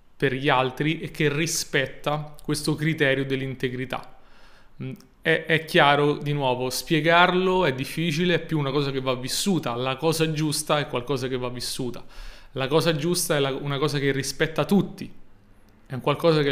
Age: 30-49